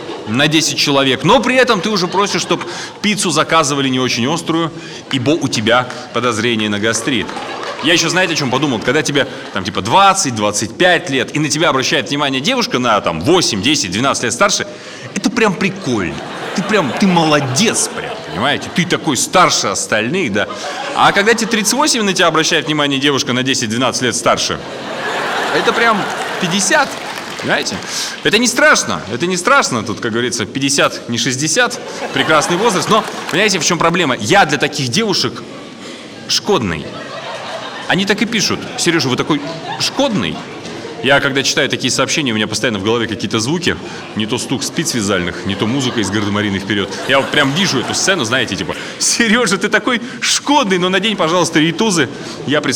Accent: native